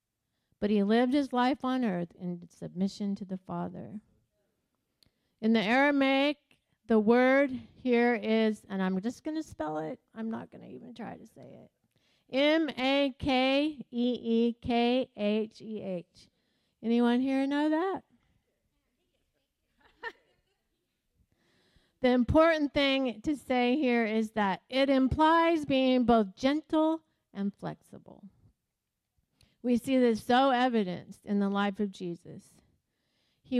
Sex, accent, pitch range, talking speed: female, American, 190-255 Hz, 120 wpm